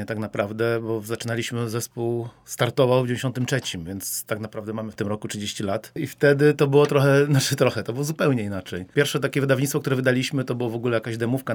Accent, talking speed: native, 215 wpm